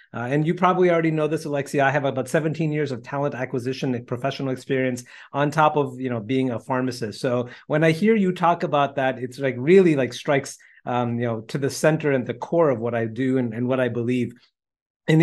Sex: male